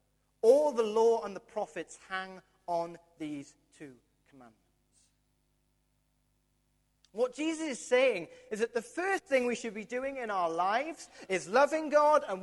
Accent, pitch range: British, 205-275 Hz